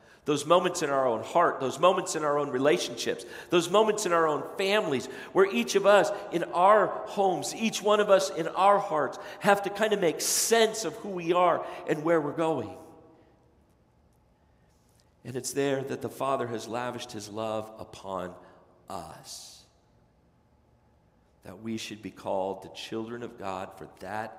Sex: male